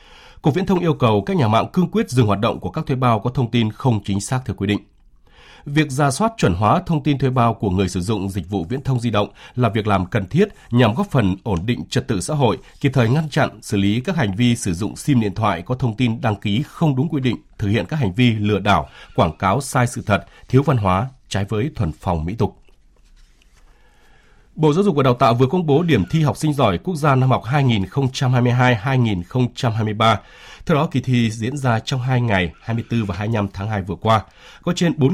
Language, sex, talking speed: Vietnamese, male, 240 wpm